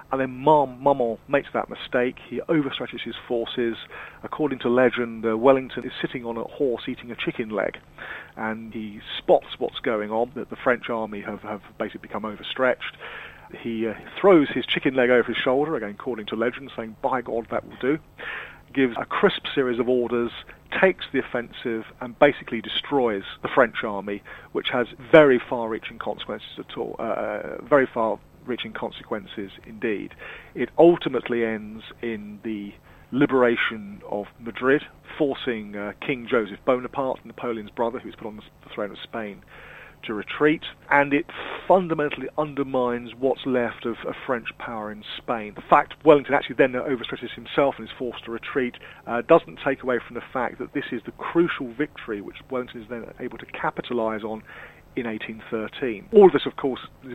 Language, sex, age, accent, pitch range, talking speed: English, male, 40-59, British, 110-135 Hz, 170 wpm